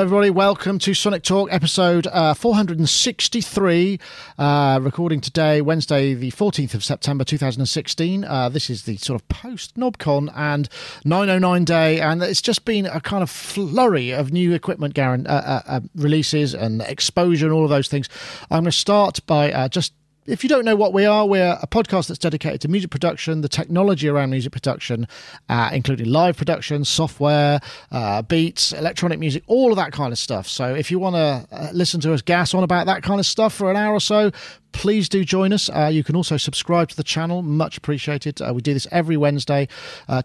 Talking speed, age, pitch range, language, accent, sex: 195 wpm, 40-59, 135-180 Hz, English, British, male